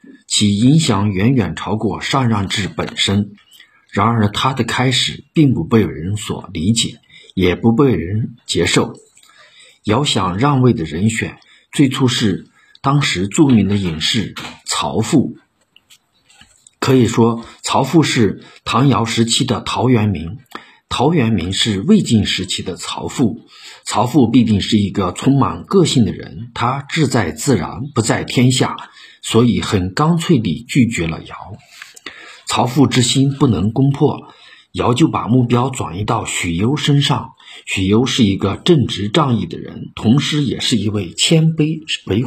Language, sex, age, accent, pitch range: Chinese, male, 50-69, native, 100-135 Hz